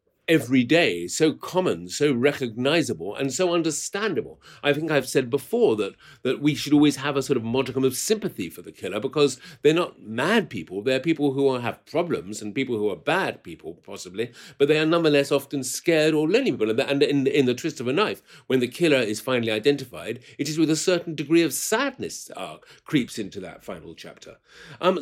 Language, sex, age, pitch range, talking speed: English, male, 50-69, 130-165 Hz, 200 wpm